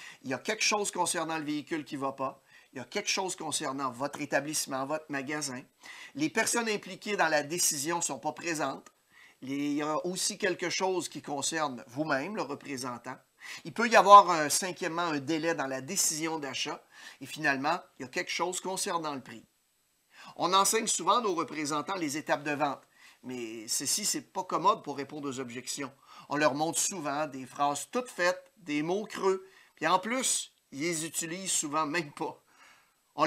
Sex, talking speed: male, 190 wpm